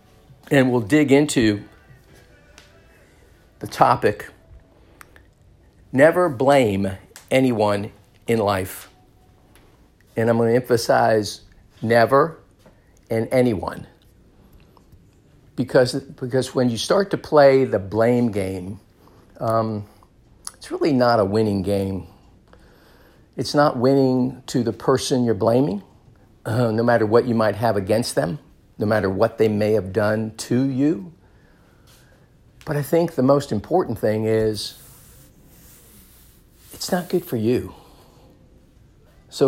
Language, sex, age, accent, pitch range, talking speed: English, male, 50-69, American, 100-130 Hz, 115 wpm